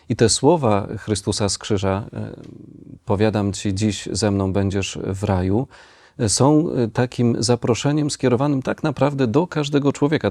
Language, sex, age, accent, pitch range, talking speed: Polish, male, 40-59, native, 100-120 Hz, 135 wpm